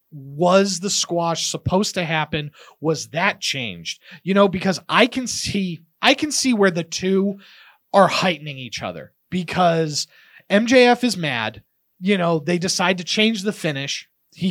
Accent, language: American, English